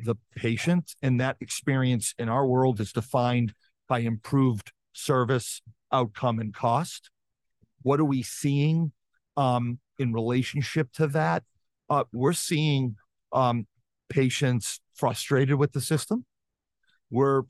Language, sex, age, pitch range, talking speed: English, male, 50-69, 120-145 Hz, 120 wpm